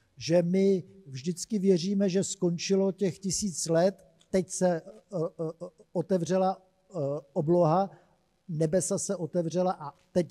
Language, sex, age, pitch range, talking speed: Czech, male, 50-69, 155-190 Hz, 120 wpm